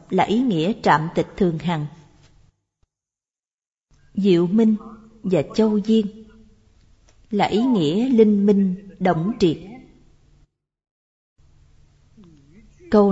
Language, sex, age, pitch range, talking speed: Vietnamese, female, 20-39, 170-230 Hz, 90 wpm